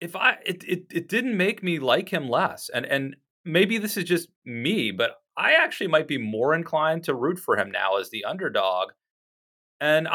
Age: 30-49